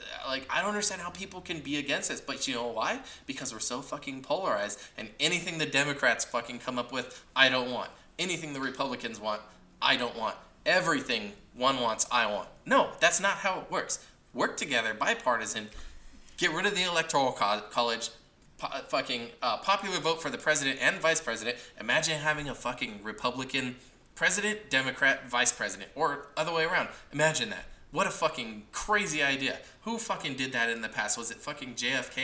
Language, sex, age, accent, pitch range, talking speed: English, male, 20-39, American, 120-165 Hz, 180 wpm